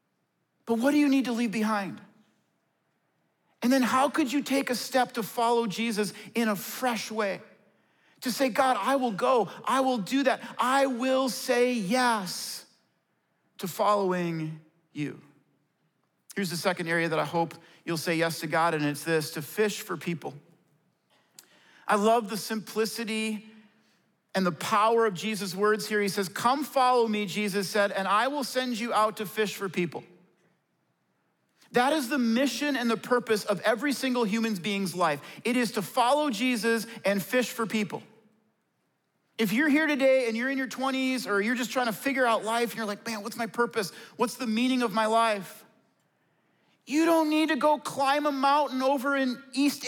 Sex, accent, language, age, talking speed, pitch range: male, American, English, 50-69, 180 wpm, 210-265 Hz